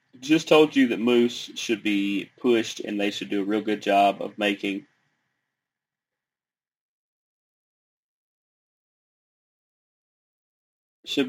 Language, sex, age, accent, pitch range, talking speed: English, male, 30-49, American, 110-135 Hz, 100 wpm